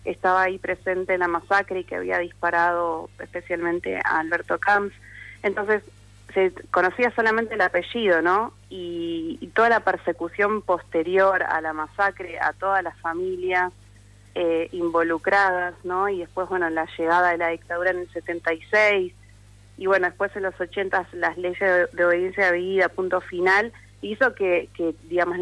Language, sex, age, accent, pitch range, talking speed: Spanish, female, 30-49, Argentinian, 165-195 Hz, 160 wpm